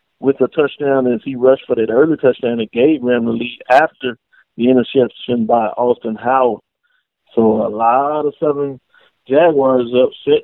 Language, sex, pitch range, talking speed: English, male, 120-150 Hz, 160 wpm